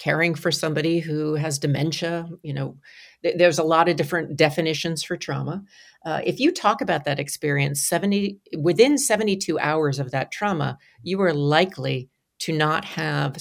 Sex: female